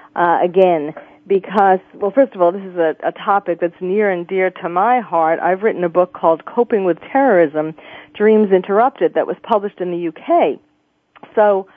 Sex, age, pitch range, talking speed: female, 40-59, 175-220 Hz, 185 wpm